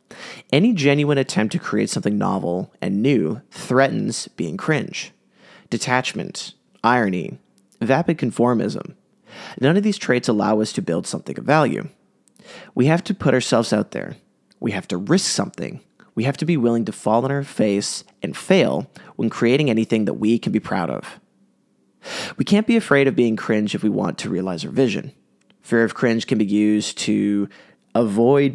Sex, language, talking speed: male, English, 170 wpm